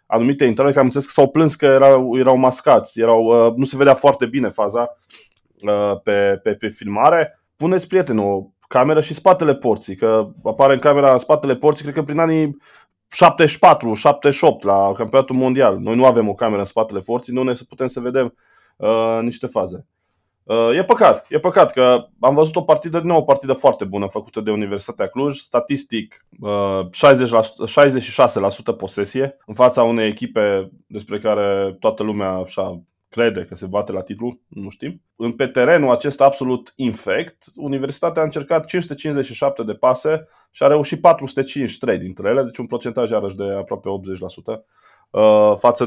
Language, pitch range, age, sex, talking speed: Romanian, 105-140 Hz, 20-39, male, 165 wpm